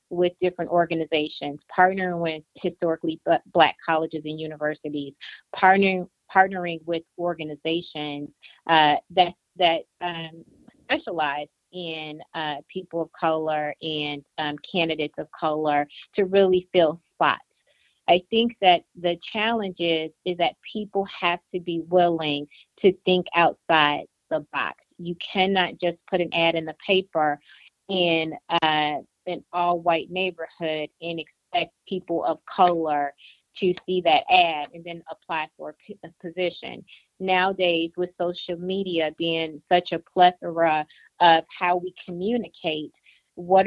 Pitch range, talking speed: 160-185 Hz, 130 wpm